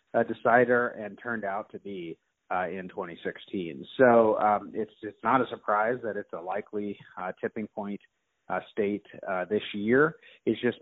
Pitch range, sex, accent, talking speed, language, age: 95-110 Hz, male, American, 170 wpm, English, 30-49